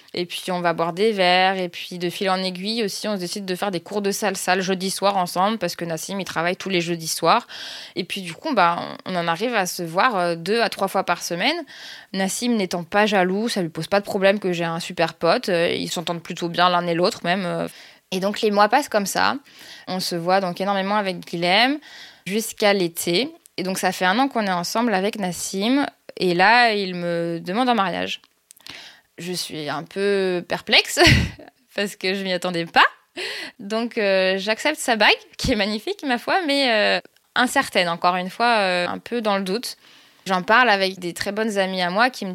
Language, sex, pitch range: French, female, 180-230 Hz